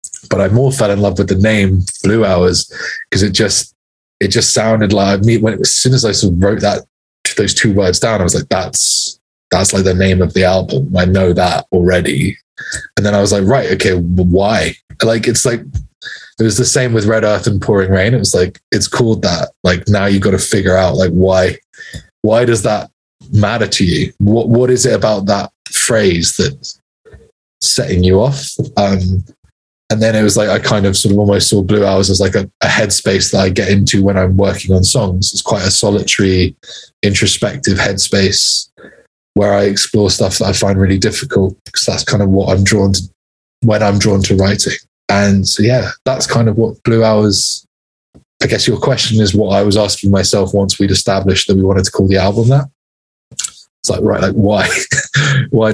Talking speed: 205 wpm